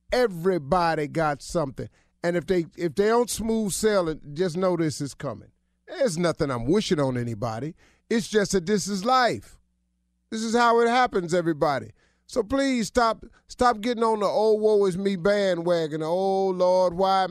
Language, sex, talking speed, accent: English, male, 175 wpm, American